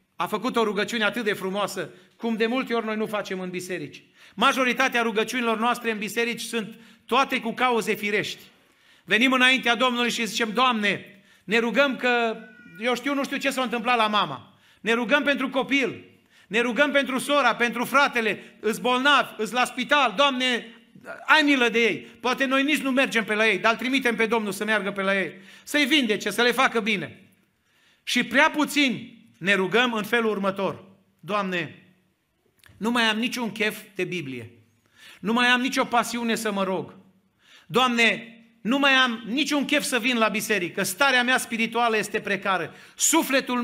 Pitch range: 200-250 Hz